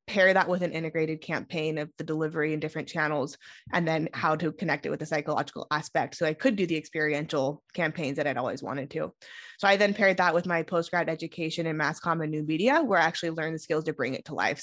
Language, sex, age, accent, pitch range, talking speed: English, female, 20-39, American, 160-200 Hz, 240 wpm